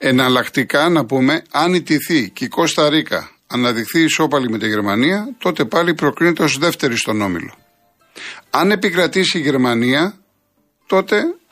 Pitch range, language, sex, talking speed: 125-180 Hz, Greek, male, 135 wpm